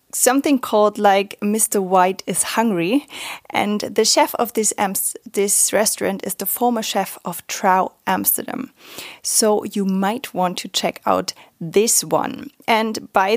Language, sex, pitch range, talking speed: English, female, 190-235 Hz, 150 wpm